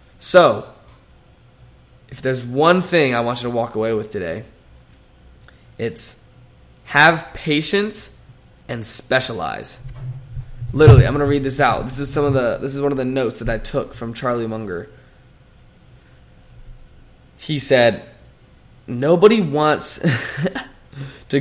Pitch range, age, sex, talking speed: 120-145 Hz, 20-39, male, 130 wpm